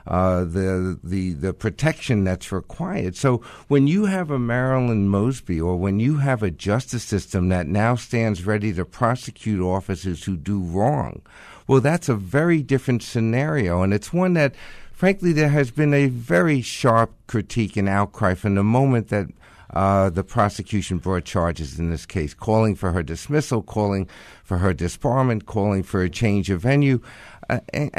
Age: 60-79